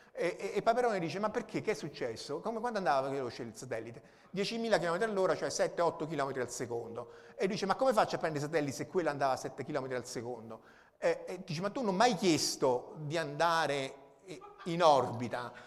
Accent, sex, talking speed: native, male, 205 wpm